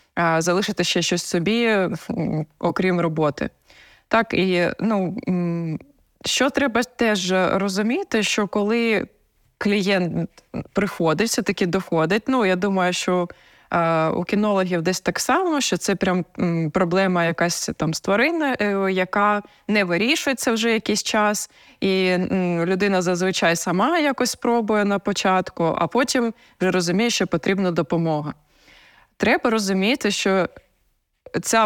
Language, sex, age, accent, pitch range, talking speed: Ukrainian, female, 20-39, native, 175-220 Hz, 115 wpm